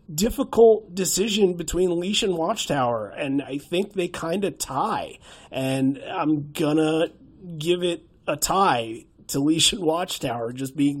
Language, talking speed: English, 140 wpm